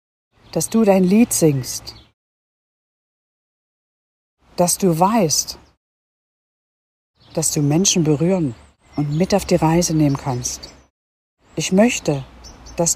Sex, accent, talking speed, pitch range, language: female, German, 100 wpm, 140-200 Hz, German